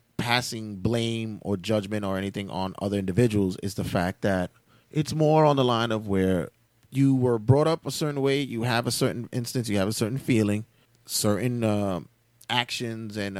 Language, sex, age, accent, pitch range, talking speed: English, male, 30-49, American, 100-130 Hz, 185 wpm